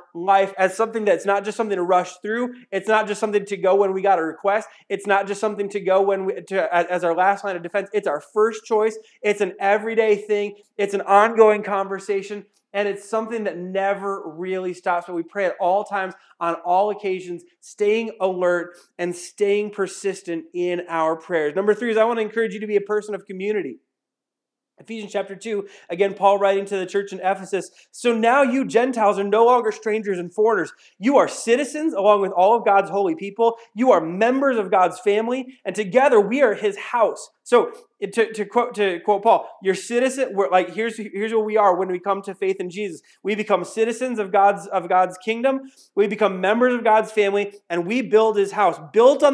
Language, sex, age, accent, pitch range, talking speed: English, male, 30-49, American, 195-225 Hz, 210 wpm